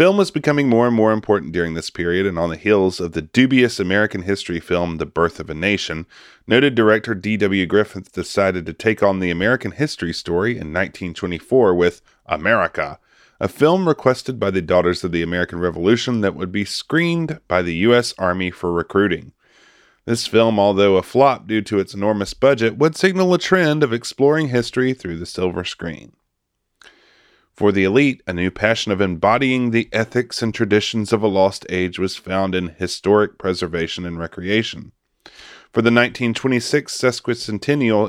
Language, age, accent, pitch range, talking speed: English, 30-49, American, 90-120 Hz, 170 wpm